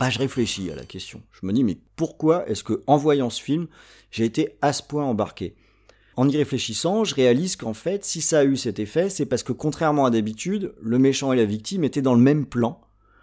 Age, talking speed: 40-59, 230 wpm